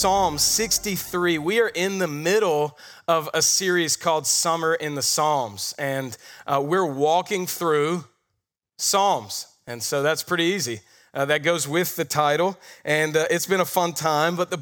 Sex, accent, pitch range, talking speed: male, American, 150-185 Hz, 170 wpm